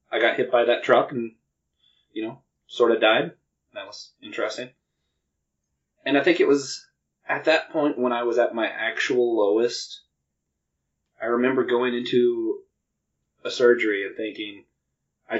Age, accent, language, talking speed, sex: 20-39, American, English, 150 wpm, male